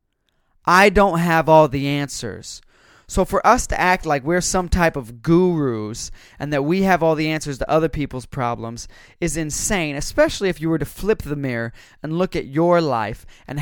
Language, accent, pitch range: English, American, 135-175 Hz